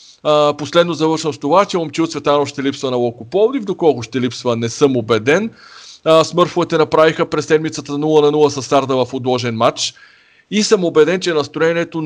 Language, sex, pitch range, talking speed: Bulgarian, male, 135-170 Hz, 190 wpm